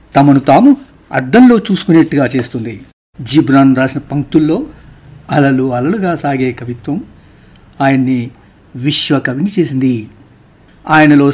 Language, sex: Telugu, male